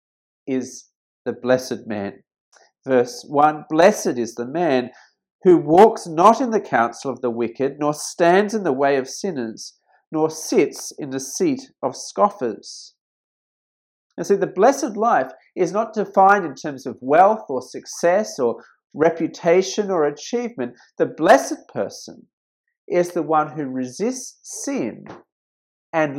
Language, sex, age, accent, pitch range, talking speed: English, male, 40-59, Australian, 140-220 Hz, 140 wpm